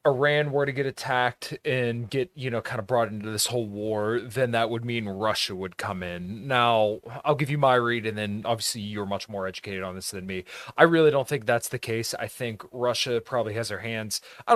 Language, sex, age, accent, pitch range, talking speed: English, male, 30-49, American, 105-130 Hz, 230 wpm